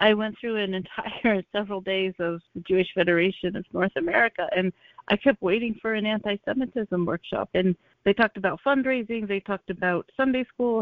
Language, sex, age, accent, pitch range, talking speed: English, female, 40-59, American, 175-230 Hz, 175 wpm